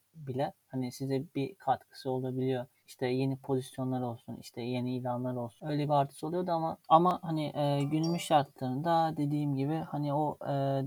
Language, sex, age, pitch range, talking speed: Turkish, male, 40-59, 130-145 Hz, 160 wpm